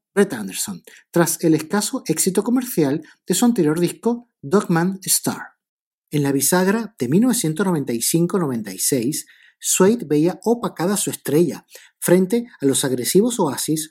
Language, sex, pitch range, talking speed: Spanish, male, 150-210 Hz, 125 wpm